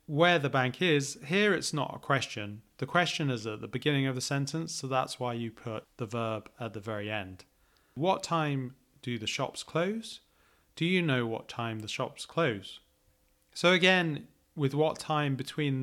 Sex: male